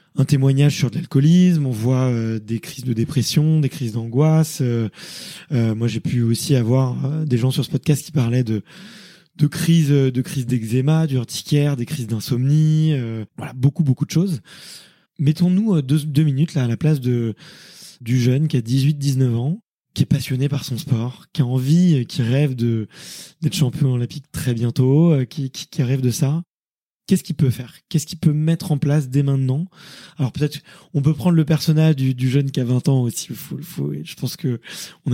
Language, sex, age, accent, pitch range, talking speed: French, male, 20-39, French, 130-160 Hz, 210 wpm